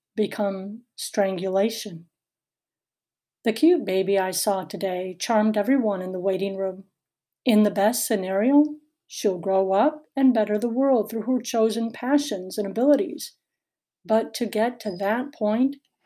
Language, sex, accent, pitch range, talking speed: English, female, American, 195-235 Hz, 140 wpm